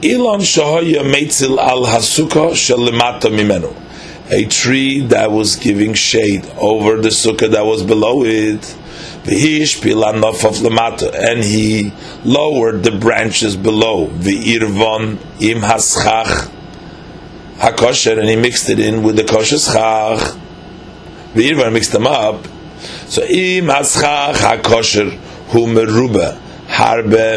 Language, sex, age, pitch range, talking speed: English, male, 40-59, 110-135 Hz, 75 wpm